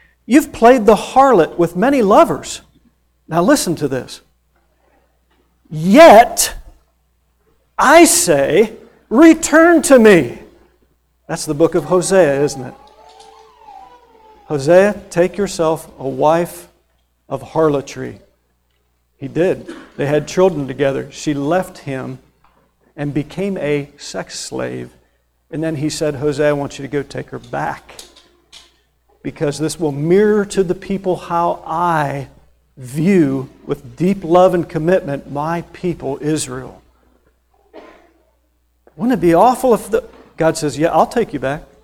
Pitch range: 145-225 Hz